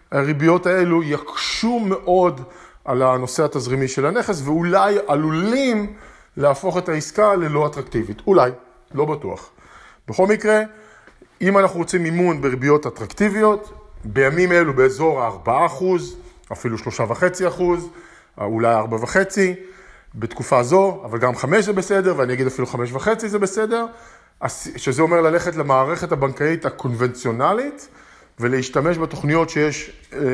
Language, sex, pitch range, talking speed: Hebrew, male, 135-185 Hz, 115 wpm